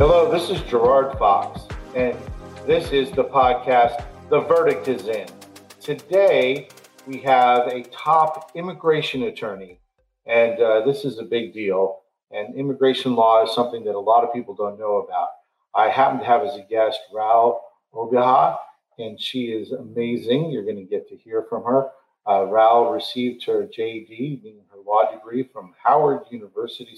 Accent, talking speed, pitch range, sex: American, 165 wpm, 110-160 Hz, male